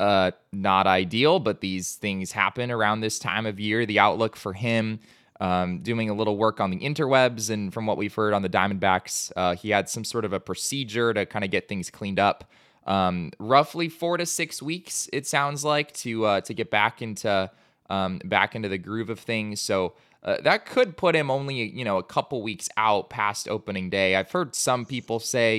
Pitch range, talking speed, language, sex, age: 95-125 Hz, 210 wpm, English, male, 20-39